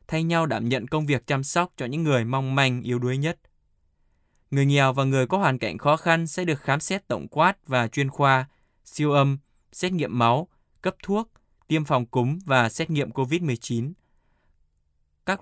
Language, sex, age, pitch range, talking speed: Vietnamese, male, 20-39, 125-155 Hz, 190 wpm